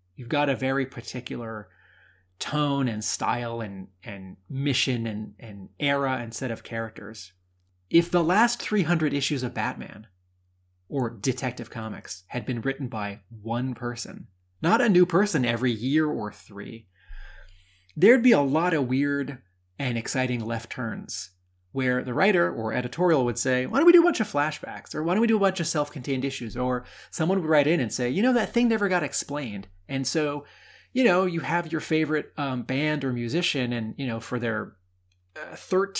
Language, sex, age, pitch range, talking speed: English, male, 30-49, 110-150 Hz, 185 wpm